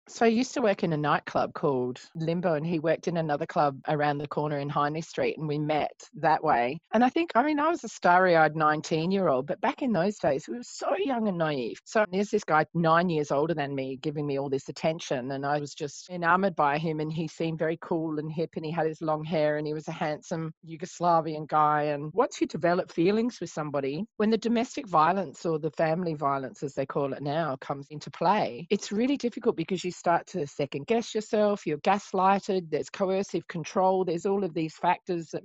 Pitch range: 145-185 Hz